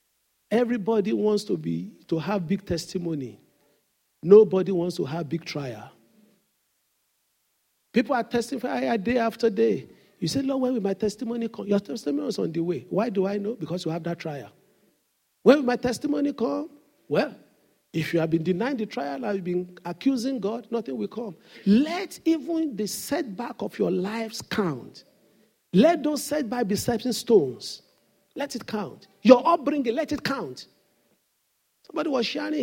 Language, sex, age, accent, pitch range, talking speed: English, male, 50-69, Nigerian, 205-275 Hz, 160 wpm